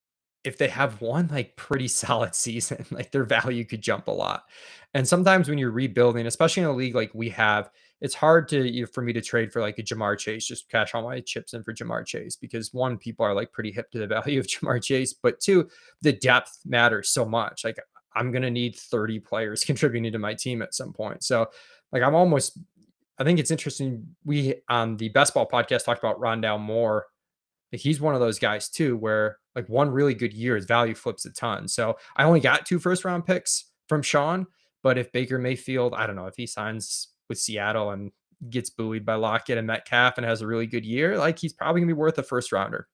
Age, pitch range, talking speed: 20-39, 115-140 Hz, 225 wpm